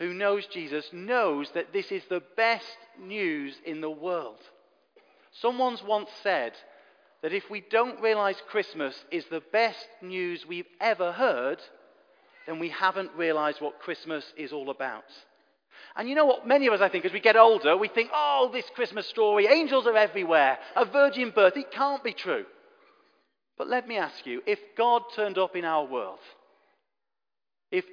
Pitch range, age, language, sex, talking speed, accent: 180-280 Hz, 40-59, English, male, 170 wpm, British